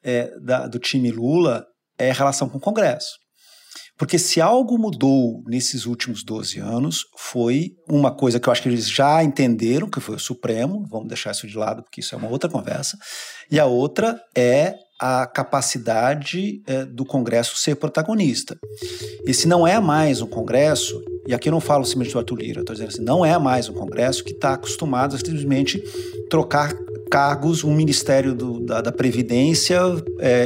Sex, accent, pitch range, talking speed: male, Brazilian, 120-175 Hz, 185 wpm